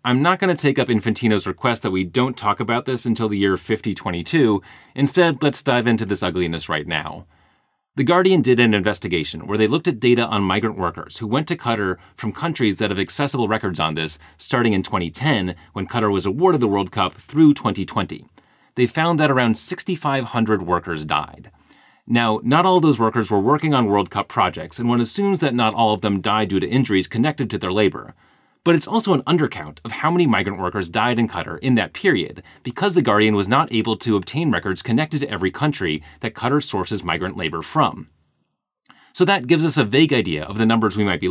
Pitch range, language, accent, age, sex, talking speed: 95-130 Hz, English, American, 30-49, male, 210 wpm